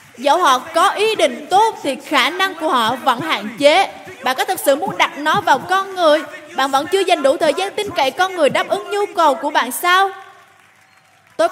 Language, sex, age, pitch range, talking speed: Vietnamese, female, 20-39, 235-320 Hz, 225 wpm